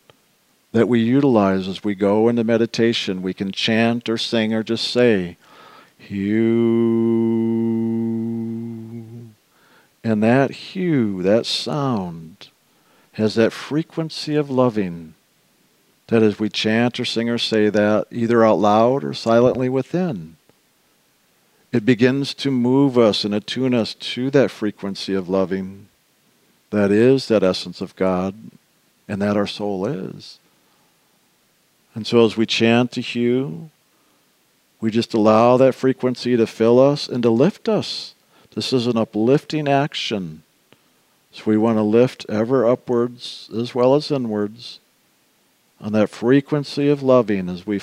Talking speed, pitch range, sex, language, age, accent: 135 wpm, 105-130 Hz, male, English, 50-69, American